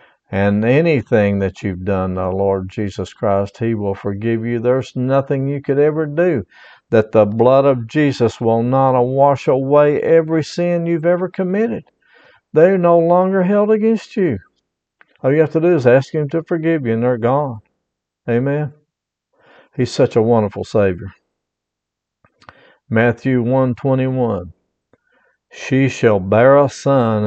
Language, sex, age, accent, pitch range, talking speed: English, male, 50-69, American, 110-135 Hz, 150 wpm